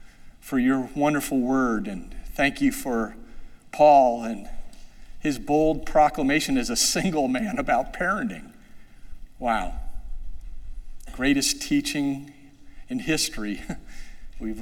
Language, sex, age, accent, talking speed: English, male, 50-69, American, 105 wpm